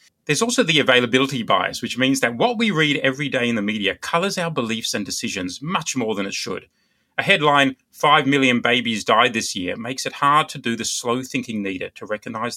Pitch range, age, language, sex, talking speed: 120-155 Hz, 30-49, English, male, 215 wpm